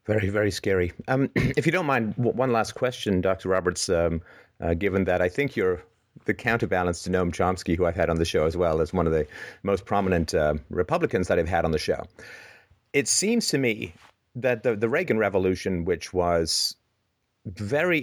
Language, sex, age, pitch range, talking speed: English, male, 30-49, 90-115 Hz, 195 wpm